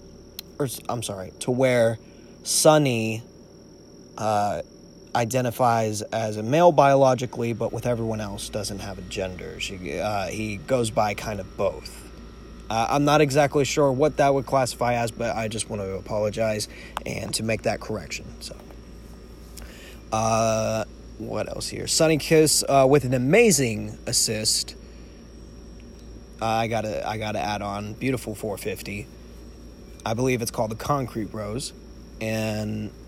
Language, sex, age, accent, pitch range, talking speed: English, male, 20-39, American, 105-135 Hz, 140 wpm